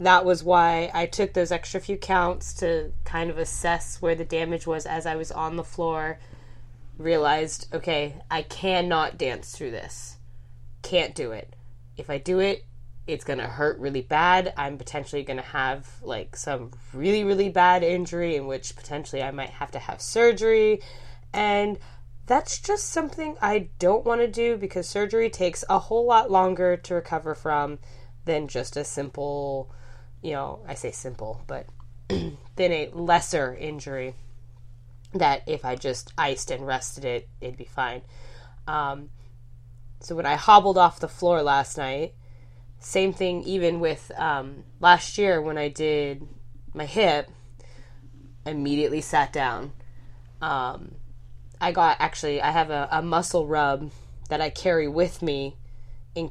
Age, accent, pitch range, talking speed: 20-39, American, 120-170 Hz, 160 wpm